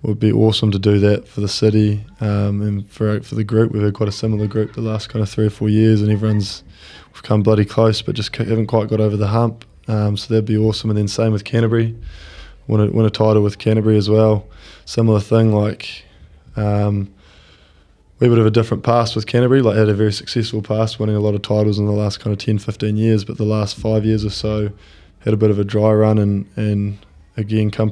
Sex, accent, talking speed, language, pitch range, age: male, Australian, 235 wpm, English, 105-110 Hz, 20-39